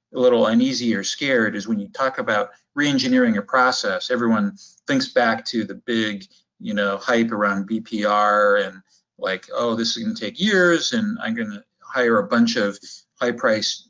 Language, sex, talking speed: English, male, 180 wpm